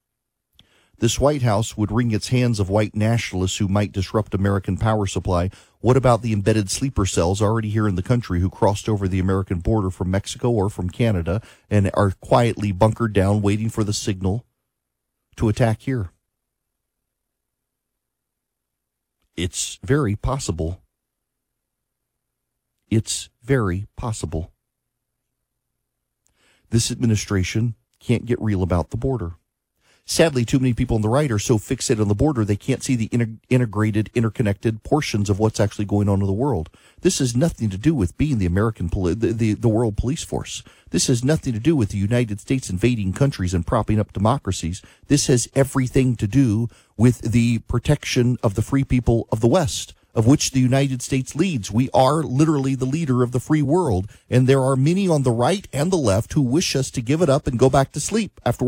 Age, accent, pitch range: 40-59, American, 100-135 Hz